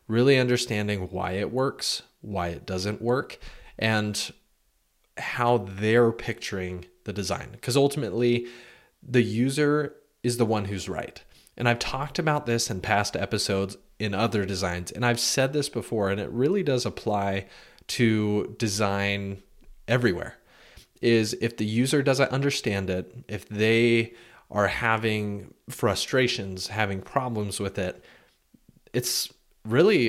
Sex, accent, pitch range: male, American, 100-120 Hz